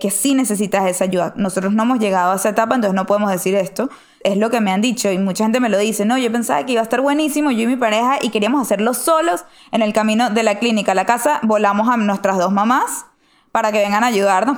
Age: 10-29